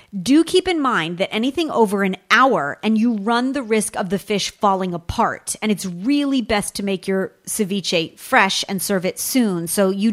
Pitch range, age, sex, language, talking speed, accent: 195-245 Hz, 30-49, female, English, 200 wpm, American